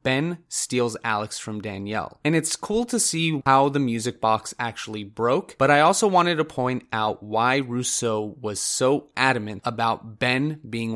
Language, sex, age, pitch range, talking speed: English, male, 30-49, 115-140 Hz, 170 wpm